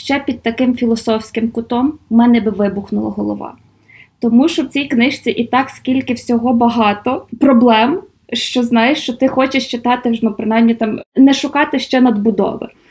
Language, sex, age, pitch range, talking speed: Ukrainian, female, 20-39, 225-280 Hz, 160 wpm